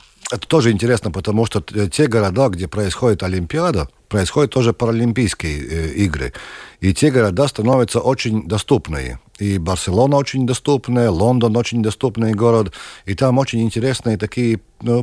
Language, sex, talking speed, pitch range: Russian, male, 140 wpm, 95-120 Hz